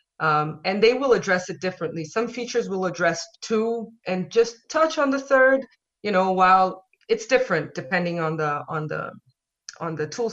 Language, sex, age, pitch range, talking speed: English, female, 30-49, 165-215 Hz, 170 wpm